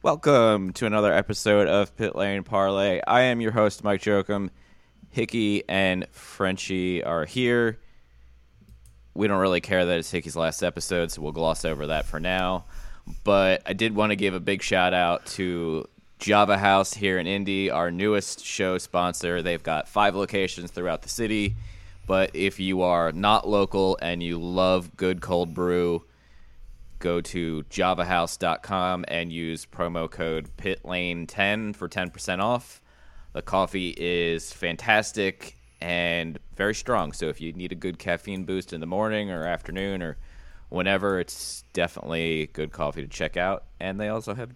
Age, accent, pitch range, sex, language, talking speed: 20-39, American, 85-100 Hz, male, English, 160 wpm